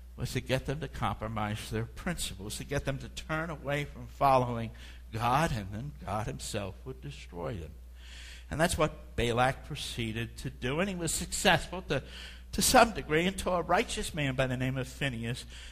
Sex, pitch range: male, 105-140 Hz